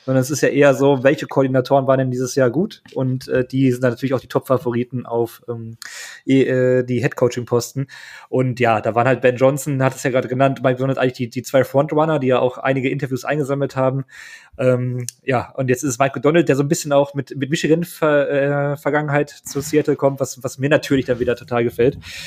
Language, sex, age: German, male, 20-39